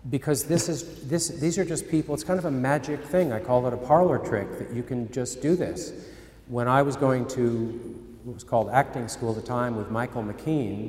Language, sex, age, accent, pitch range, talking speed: English, male, 50-69, American, 110-140 Hz, 230 wpm